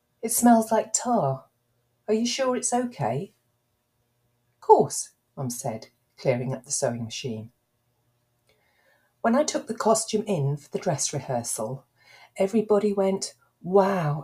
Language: English